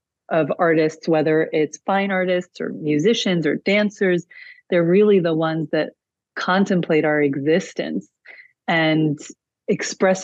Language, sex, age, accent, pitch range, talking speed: English, female, 30-49, American, 160-185 Hz, 115 wpm